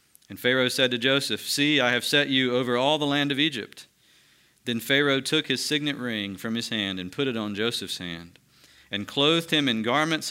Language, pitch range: English, 115-145 Hz